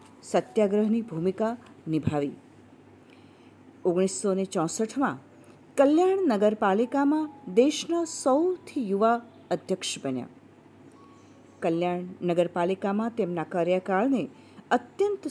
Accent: native